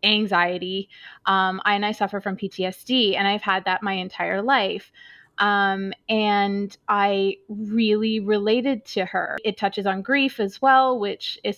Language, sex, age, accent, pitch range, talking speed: English, female, 20-39, American, 195-230 Hz, 155 wpm